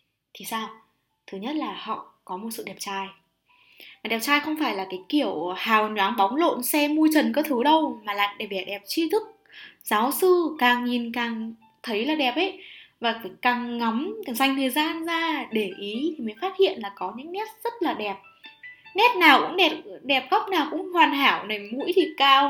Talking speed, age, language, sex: 215 wpm, 10-29, Vietnamese, female